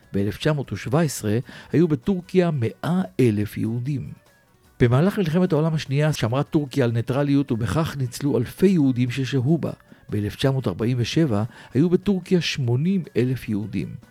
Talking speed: 100 wpm